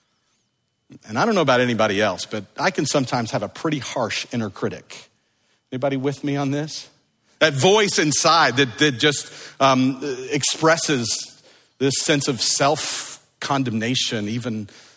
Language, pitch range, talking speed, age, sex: English, 130-170 Hz, 140 wpm, 40-59, male